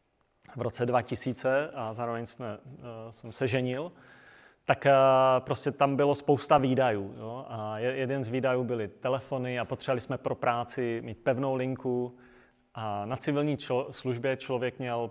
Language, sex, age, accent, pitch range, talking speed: Czech, male, 30-49, native, 115-130 Hz, 145 wpm